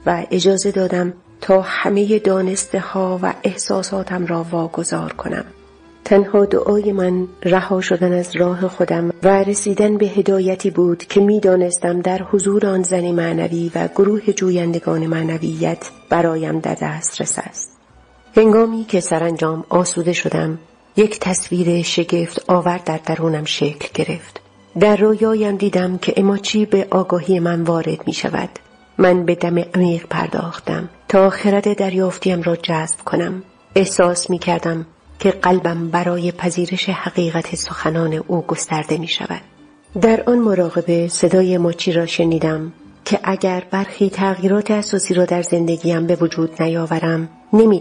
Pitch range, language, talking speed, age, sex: 170-195 Hz, Persian, 135 wpm, 40-59, female